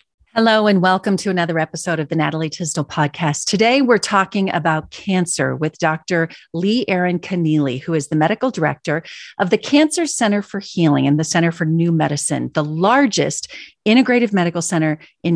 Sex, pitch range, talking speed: female, 170-230 Hz, 170 wpm